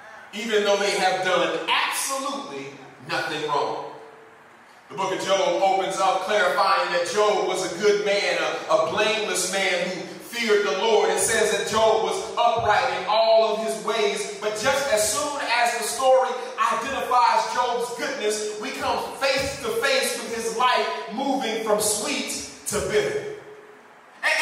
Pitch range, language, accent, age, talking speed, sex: 210-275 Hz, English, American, 30-49, 155 wpm, male